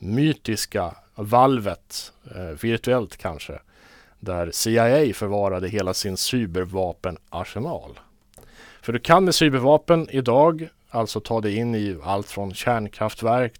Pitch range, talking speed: 95-120 Hz, 105 wpm